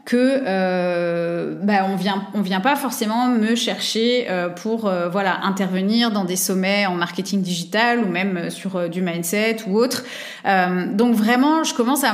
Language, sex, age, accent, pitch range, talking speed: French, female, 20-39, French, 190-245 Hz, 180 wpm